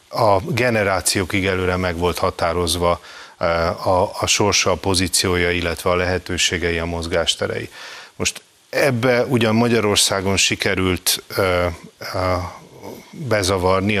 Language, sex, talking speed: Hungarian, male, 90 wpm